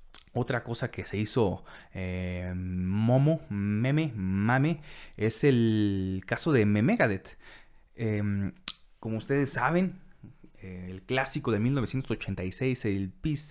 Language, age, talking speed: Spanish, 30-49, 100 wpm